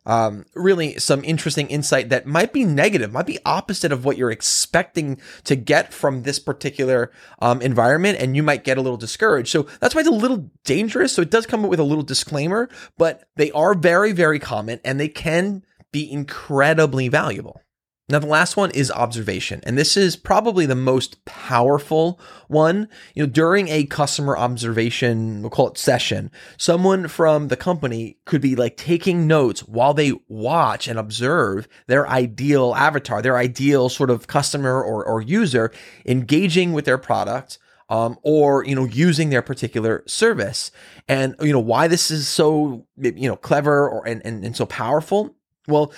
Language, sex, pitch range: English, male, 125-165 Hz